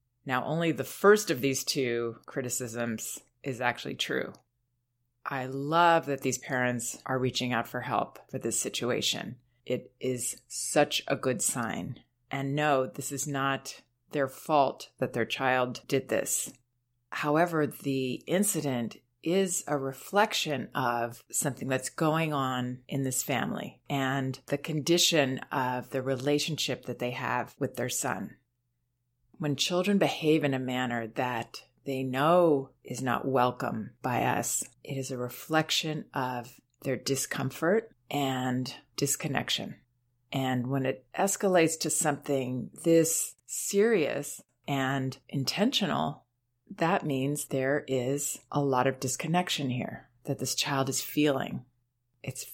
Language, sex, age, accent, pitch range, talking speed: English, female, 30-49, American, 125-150 Hz, 130 wpm